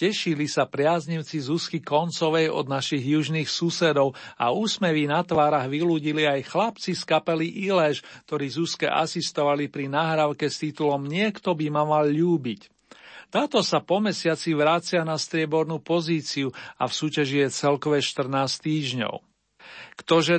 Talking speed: 140 wpm